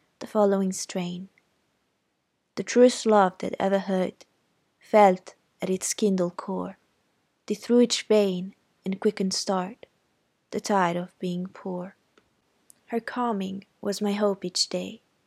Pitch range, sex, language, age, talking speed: 180-205 Hz, female, Italian, 20-39, 125 wpm